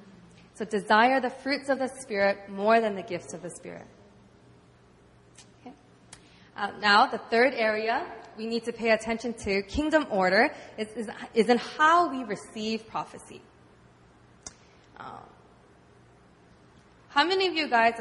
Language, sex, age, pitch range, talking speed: English, female, 20-39, 190-255 Hz, 140 wpm